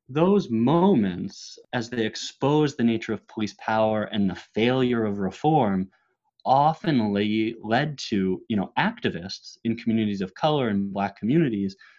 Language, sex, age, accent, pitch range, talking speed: English, male, 30-49, American, 100-115 Hz, 145 wpm